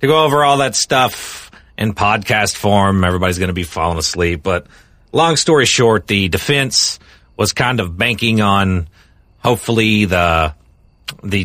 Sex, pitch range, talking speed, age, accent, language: male, 100-140 Hz, 150 wpm, 40-59, American, English